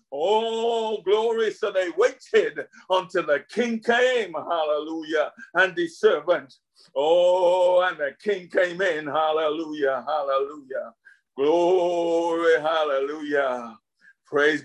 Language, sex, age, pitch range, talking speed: English, male, 50-69, 130-185 Hz, 100 wpm